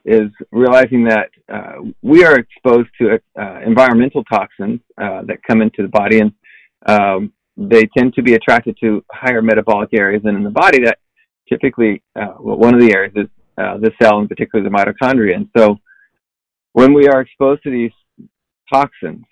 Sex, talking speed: male, 175 wpm